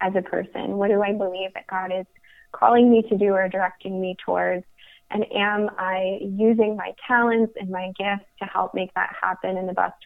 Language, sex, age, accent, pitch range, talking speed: English, female, 20-39, American, 180-210 Hz, 210 wpm